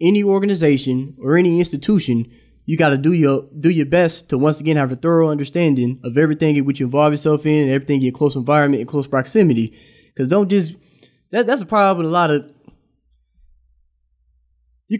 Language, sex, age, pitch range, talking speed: English, male, 20-39, 135-180 Hz, 190 wpm